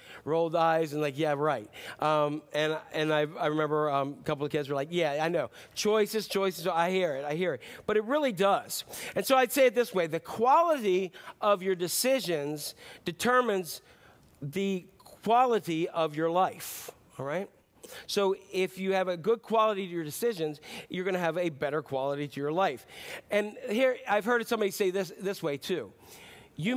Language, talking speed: English, 190 wpm